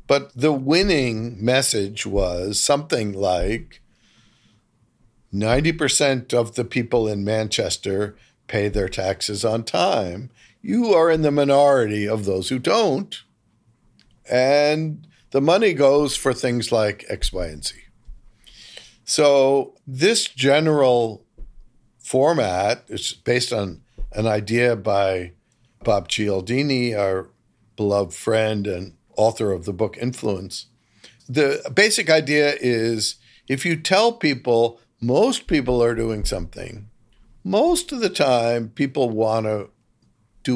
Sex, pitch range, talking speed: male, 105-140 Hz, 120 wpm